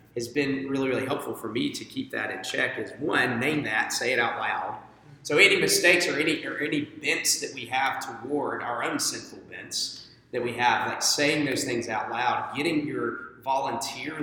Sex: male